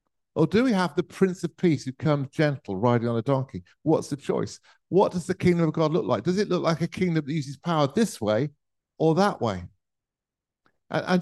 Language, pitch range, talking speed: English, 120-170 Hz, 225 wpm